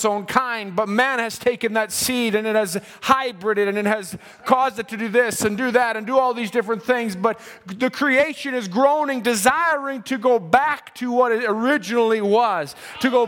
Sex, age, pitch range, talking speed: male, 30-49, 230-275 Hz, 205 wpm